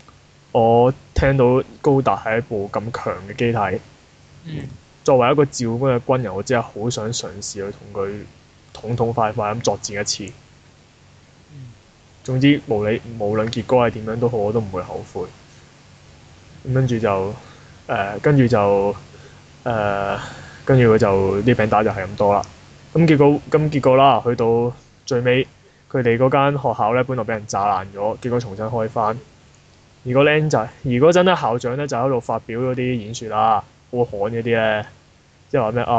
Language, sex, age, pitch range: Chinese, male, 20-39, 110-130 Hz